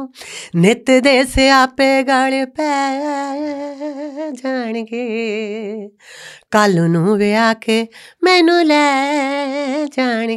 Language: Punjabi